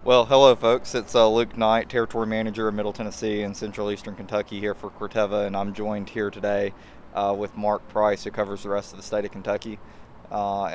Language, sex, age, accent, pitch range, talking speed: English, male, 20-39, American, 105-115 Hz, 210 wpm